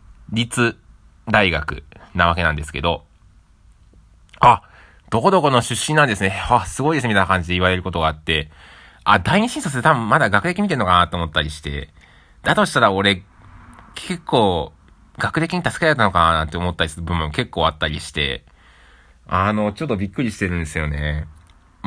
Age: 20-39